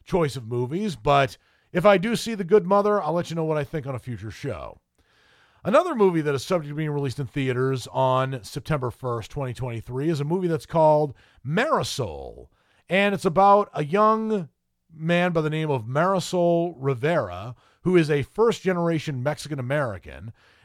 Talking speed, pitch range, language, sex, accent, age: 175 wpm, 135-185 Hz, English, male, American, 40-59